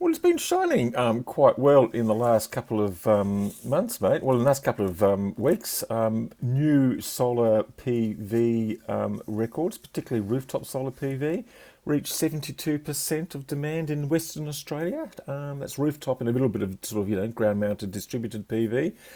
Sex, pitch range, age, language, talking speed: male, 95-130 Hz, 50-69, English, 170 wpm